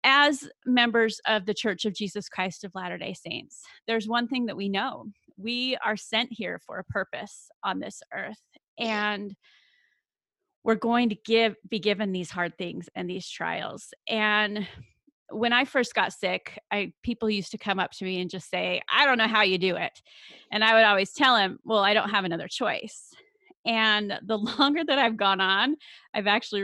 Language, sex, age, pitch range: English, female, 30-49, 190-230 Hz